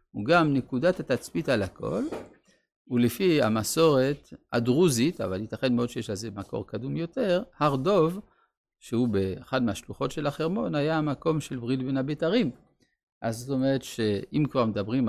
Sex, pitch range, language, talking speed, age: male, 110-160 Hz, Hebrew, 145 wpm, 50-69